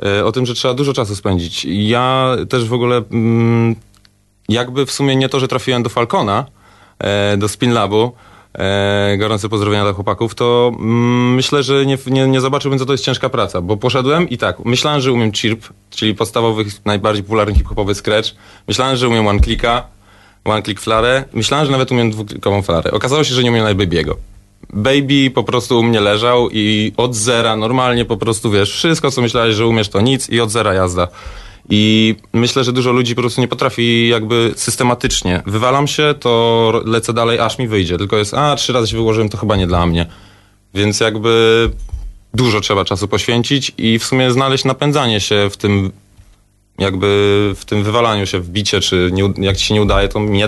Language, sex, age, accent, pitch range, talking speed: Polish, male, 30-49, native, 100-125 Hz, 190 wpm